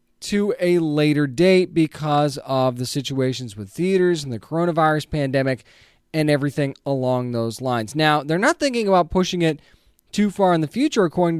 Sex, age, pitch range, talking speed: male, 20-39, 135-185 Hz, 170 wpm